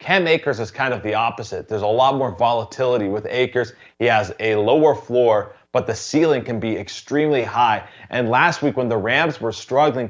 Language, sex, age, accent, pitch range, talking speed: English, male, 30-49, American, 115-145 Hz, 200 wpm